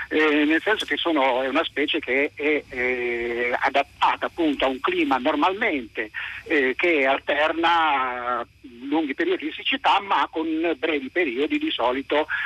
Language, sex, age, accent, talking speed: Italian, male, 50-69, native, 145 wpm